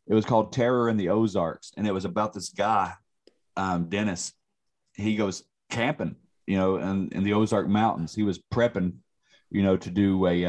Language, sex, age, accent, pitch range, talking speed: English, male, 30-49, American, 85-105 Hz, 195 wpm